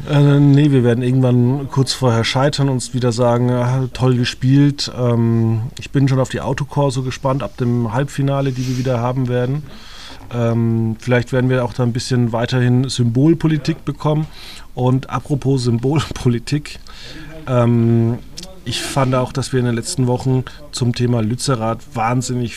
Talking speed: 155 wpm